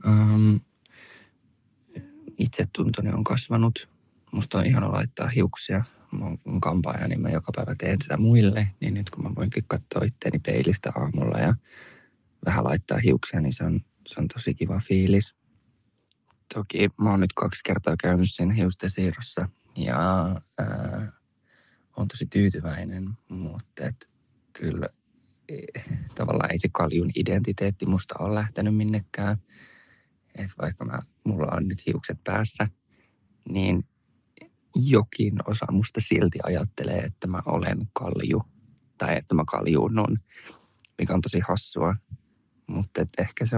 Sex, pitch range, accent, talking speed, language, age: male, 95-110 Hz, native, 130 wpm, Finnish, 20-39